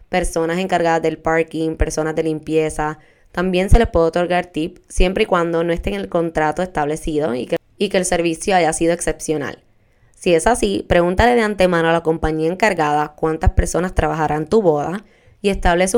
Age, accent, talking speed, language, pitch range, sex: 10-29, American, 175 wpm, Spanish, 160-195 Hz, female